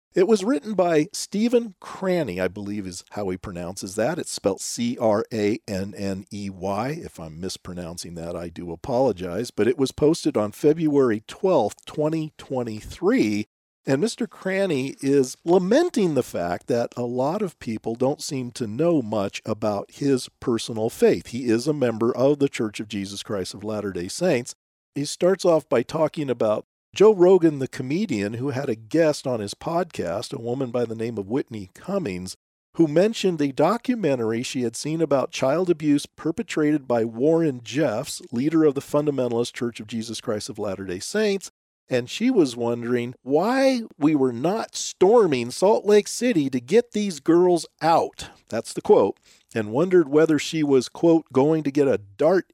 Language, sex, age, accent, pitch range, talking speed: English, male, 50-69, American, 110-160 Hz, 170 wpm